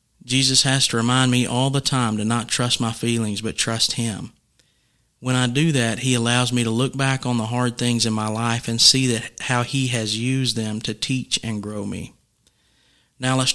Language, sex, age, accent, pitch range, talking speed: English, male, 40-59, American, 115-130 Hz, 215 wpm